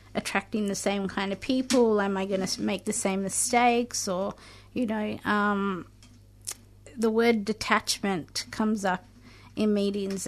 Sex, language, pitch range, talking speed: female, English, 180-215 Hz, 145 wpm